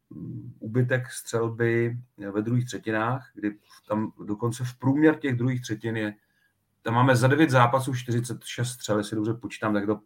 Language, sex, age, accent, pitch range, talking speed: Czech, male, 40-59, native, 105-125 Hz, 160 wpm